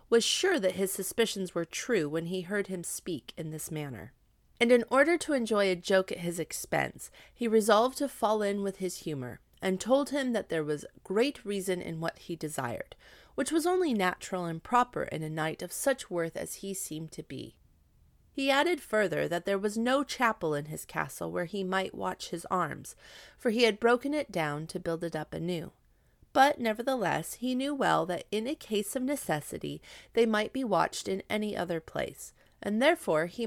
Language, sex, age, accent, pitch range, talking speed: English, female, 30-49, American, 170-240 Hz, 200 wpm